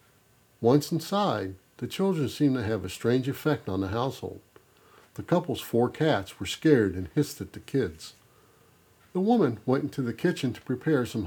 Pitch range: 100-145 Hz